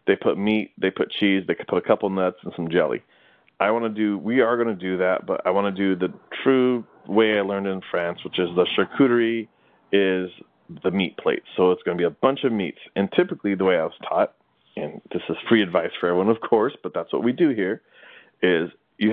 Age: 30-49